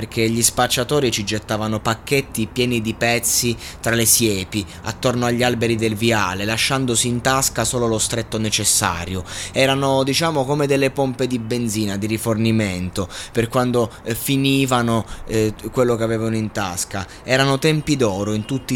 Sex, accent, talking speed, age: male, native, 155 wpm, 20-39